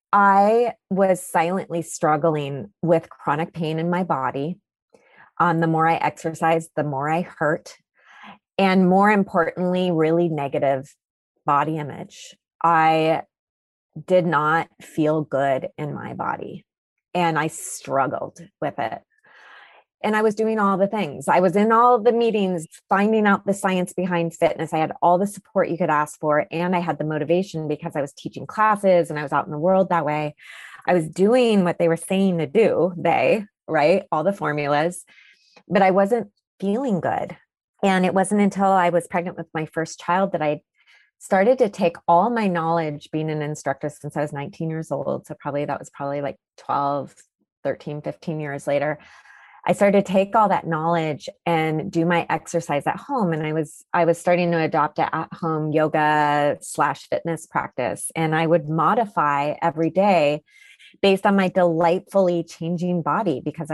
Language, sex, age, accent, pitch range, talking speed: English, female, 30-49, American, 155-190 Hz, 175 wpm